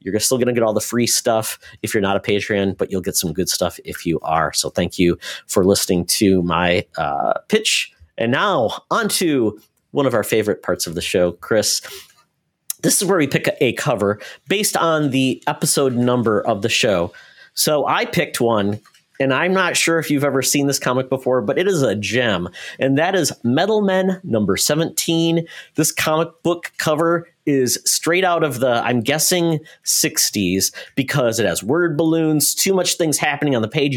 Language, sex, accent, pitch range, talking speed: English, male, American, 115-155 Hz, 200 wpm